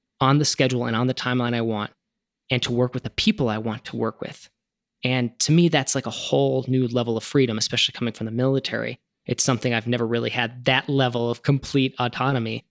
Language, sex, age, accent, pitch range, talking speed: English, male, 20-39, American, 120-140 Hz, 220 wpm